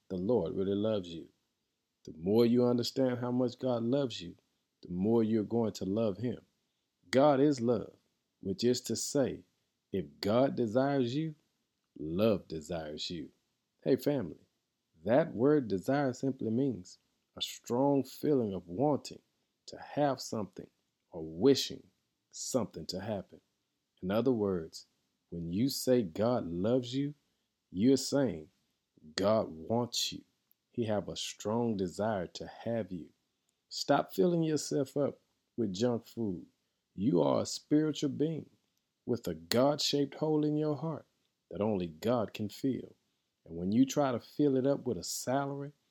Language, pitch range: English, 115-145 Hz